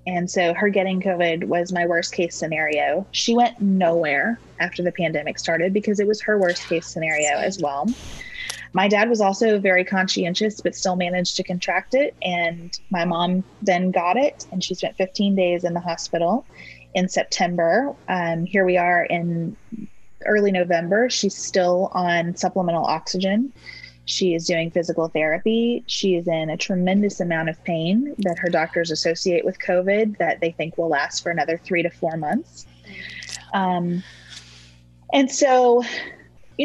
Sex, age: female, 20-39